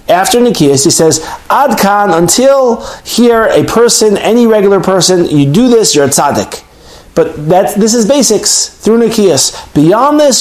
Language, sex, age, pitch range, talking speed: English, male, 30-49, 160-235 Hz, 155 wpm